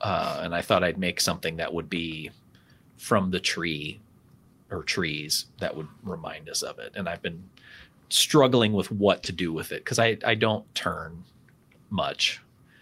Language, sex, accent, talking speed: English, male, American, 175 wpm